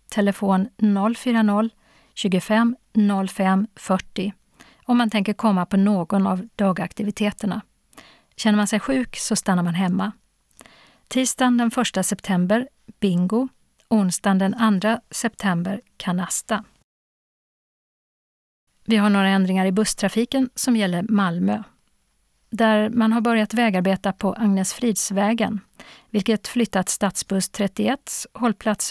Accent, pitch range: native, 195-225 Hz